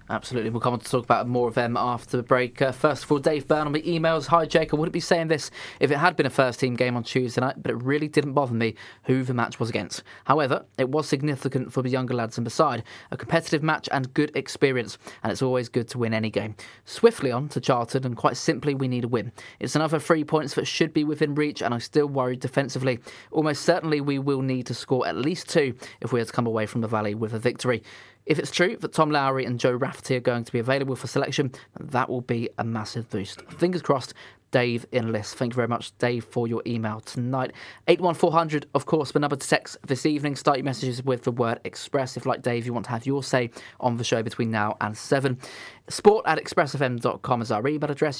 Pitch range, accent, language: 120-150 Hz, British, English